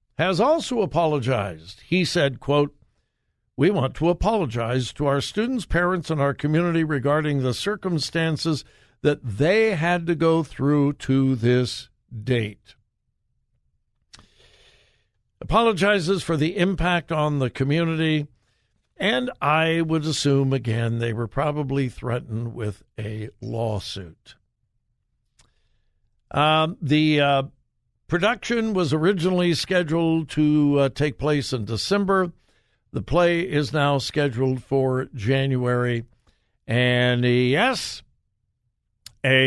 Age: 60-79